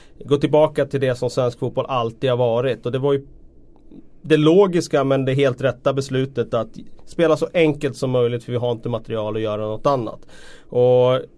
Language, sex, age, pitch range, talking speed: Swedish, male, 30-49, 120-140 Hz, 195 wpm